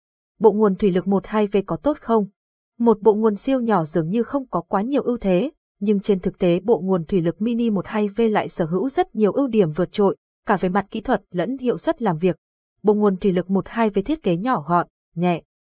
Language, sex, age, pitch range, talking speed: Vietnamese, female, 20-39, 185-230 Hz, 230 wpm